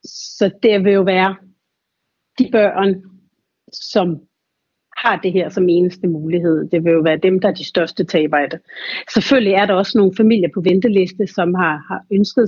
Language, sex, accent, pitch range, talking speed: Danish, female, native, 175-210 Hz, 175 wpm